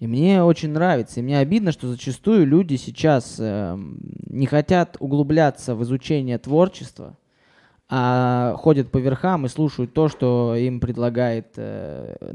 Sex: male